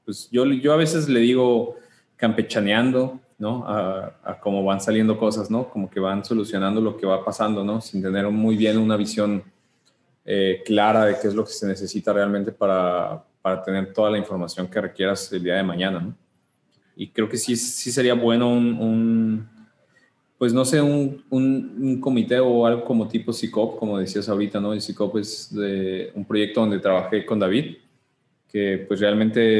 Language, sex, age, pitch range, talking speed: English, male, 20-39, 95-115 Hz, 190 wpm